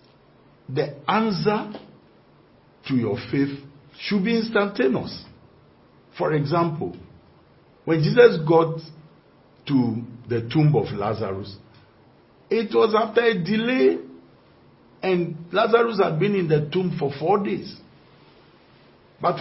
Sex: male